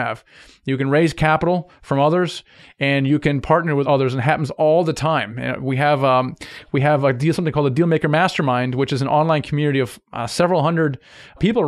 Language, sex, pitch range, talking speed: English, male, 135-160 Hz, 210 wpm